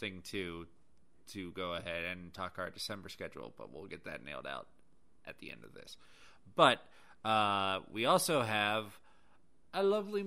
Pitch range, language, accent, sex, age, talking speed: 95-135 Hz, English, American, male, 30-49, 165 wpm